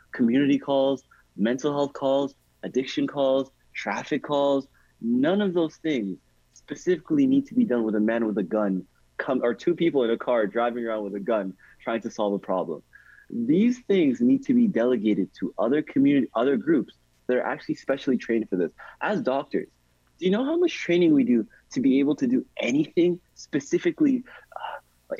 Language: English